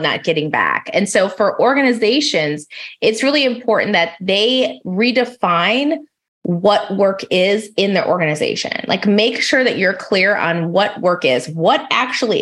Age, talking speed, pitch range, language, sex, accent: 20-39, 150 wpm, 175-235 Hz, English, female, American